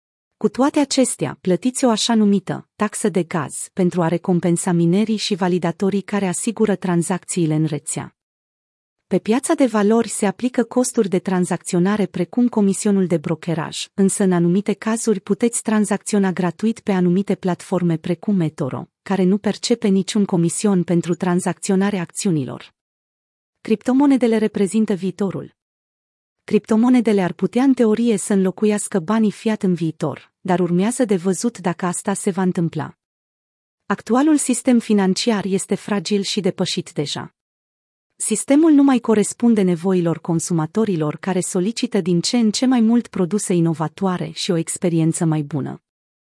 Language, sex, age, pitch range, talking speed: Romanian, female, 30-49, 175-220 Hz, 140 wpm